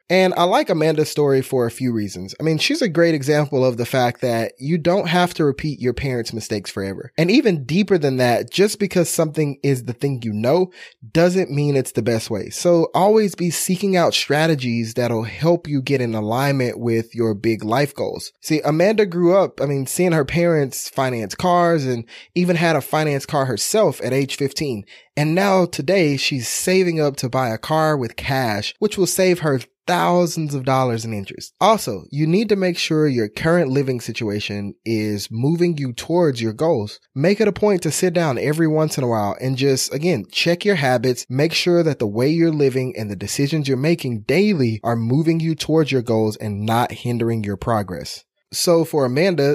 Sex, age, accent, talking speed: male, 20-39, American, 200 wpm